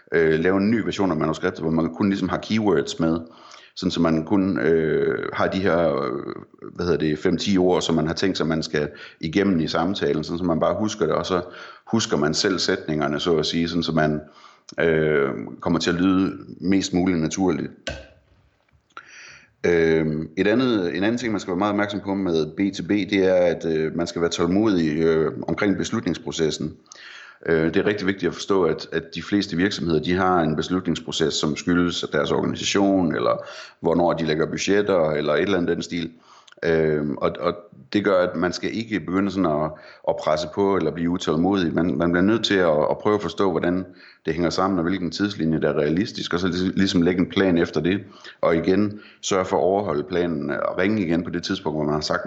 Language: Danish